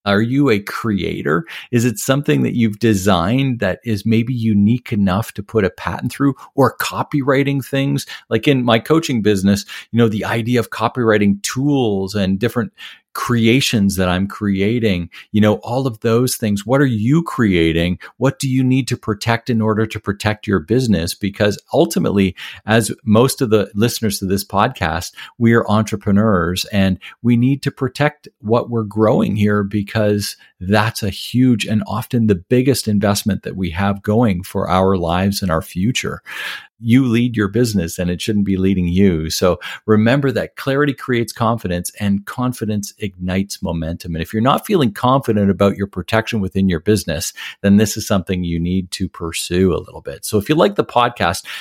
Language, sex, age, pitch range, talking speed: English, male, 50-69, 100-120 Hz, 180 wpm